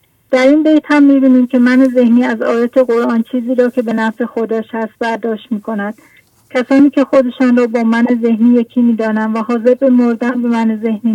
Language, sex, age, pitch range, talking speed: English, female, 40-59, 220-245 Hz, 195 wpm